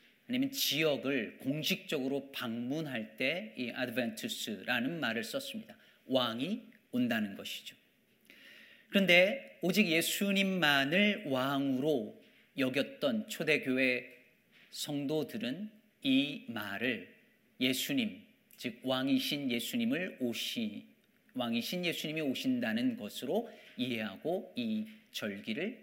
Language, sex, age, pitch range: Korean, male, 40-59, 145-230 Hz